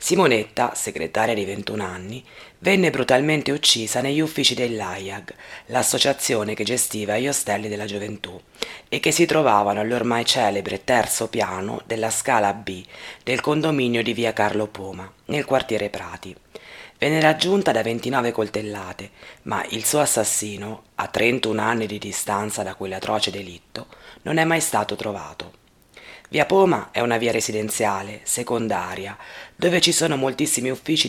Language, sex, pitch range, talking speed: Italian, female, 105-130 Hz, 140 wpm